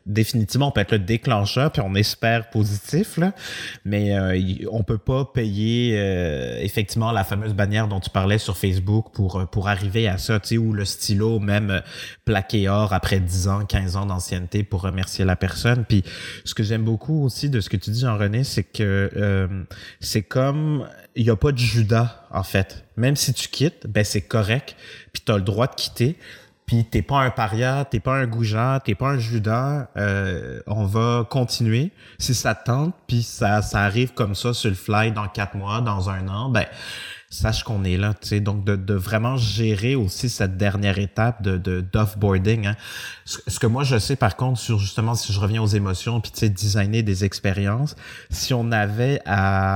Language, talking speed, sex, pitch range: French, 205 wpm, male, 100-120 Hz